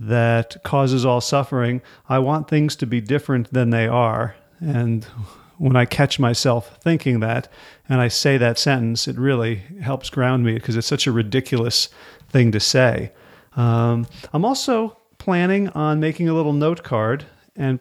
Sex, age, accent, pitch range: male, 40-59, American, 120-150 Hz